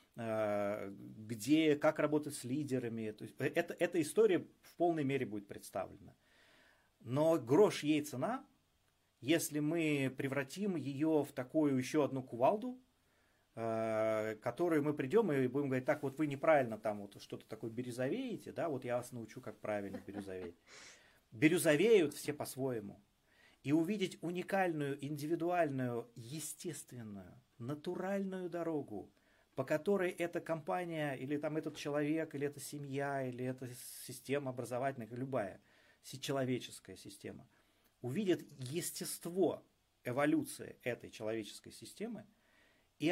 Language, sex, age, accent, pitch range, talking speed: Russian, male, 30-49, native, 120-160 Hz, 120 wpm